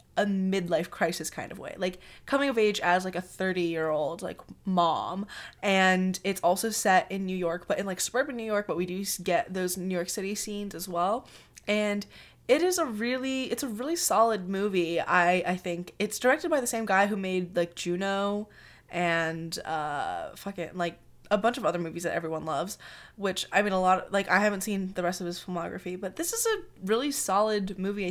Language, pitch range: English, 175-225 Hz